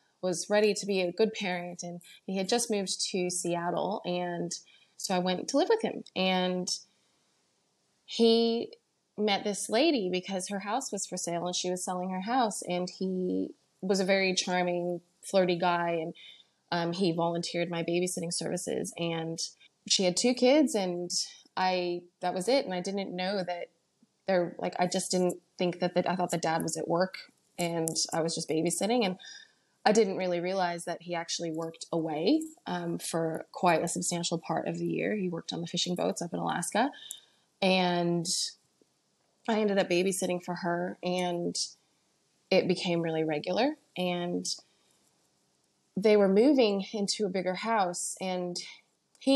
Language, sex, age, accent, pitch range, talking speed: English, female, 20-39, American, 175-195 Hz, 170 wpm